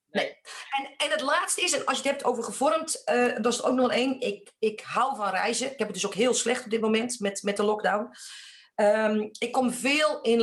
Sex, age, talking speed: female, 40-59, 245 wpm